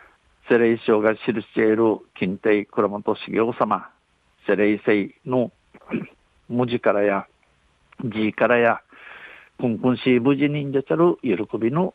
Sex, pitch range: male, 110-135 Hz